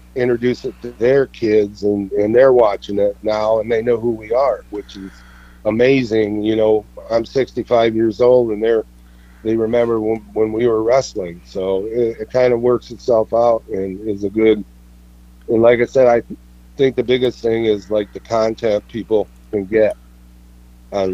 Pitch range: 95-115 Hz